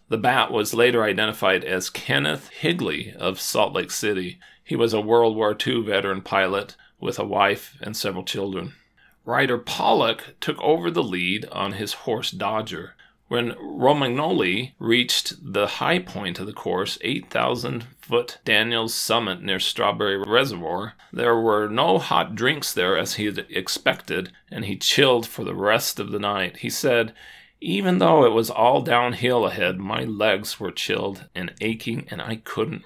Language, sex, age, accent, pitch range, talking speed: English, male, 40-59, American, 105-120 Hz, 160 wpm